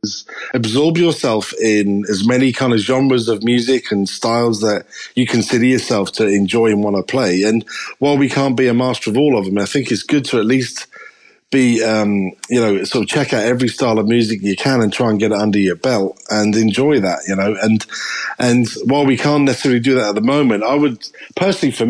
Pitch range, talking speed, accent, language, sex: 110-135 Hz, 225 wpm, British, English, male